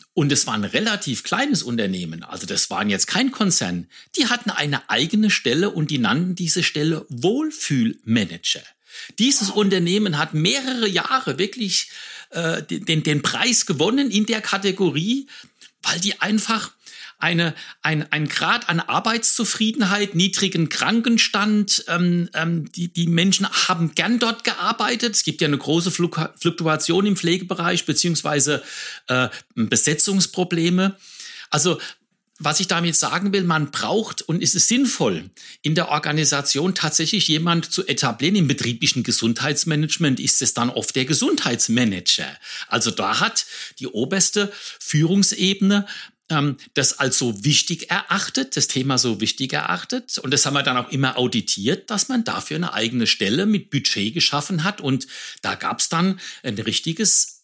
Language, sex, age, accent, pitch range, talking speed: German, male, 60-79, German, 150-205 Hz, 145 wpm